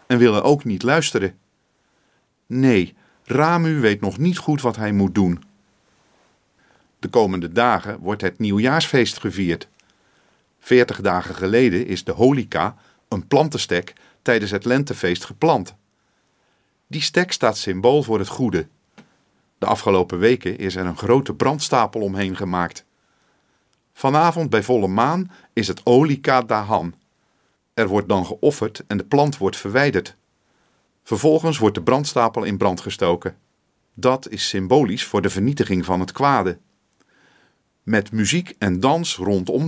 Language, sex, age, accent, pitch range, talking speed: Dutch, male, 40-59, Dutch, 95-130 Hz, 135 wpm